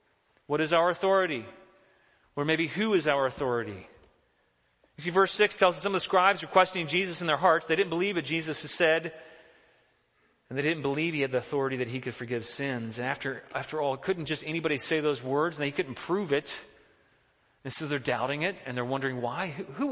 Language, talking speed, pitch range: English, 215 wpm, 135-195 Hz